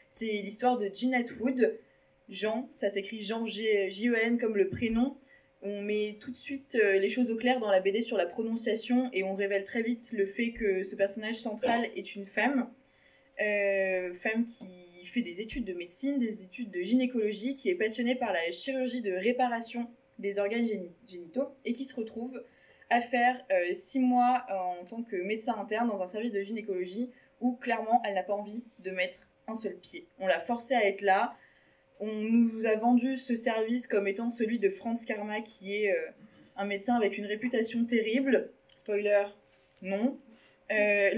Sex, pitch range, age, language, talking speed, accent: female, 205-250 Hz, 20-39, French, 180 wpm, French